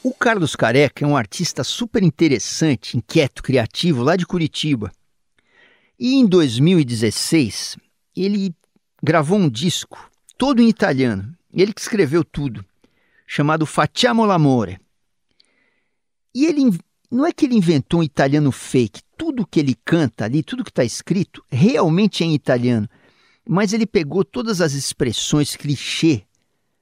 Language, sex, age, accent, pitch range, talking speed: Portuguese, male, 50-69, Brazilian, 135-205 Hz, 135 wpm